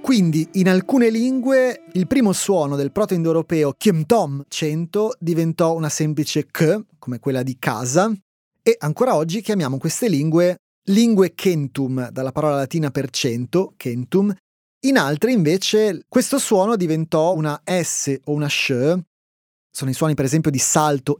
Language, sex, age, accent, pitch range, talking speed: Italian, male, 30-49, native, 140-185 Hz, 140 wpm